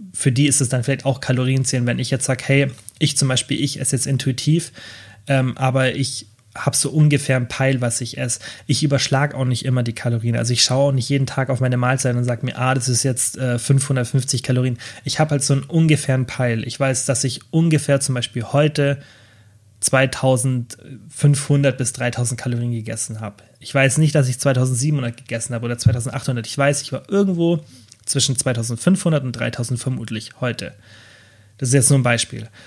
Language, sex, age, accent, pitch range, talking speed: German, male, 30-49, German, 120-140 Hz, 195 wpm